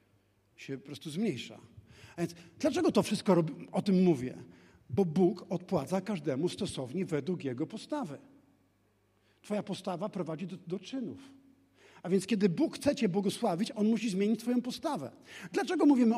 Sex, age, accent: male, 50-69, native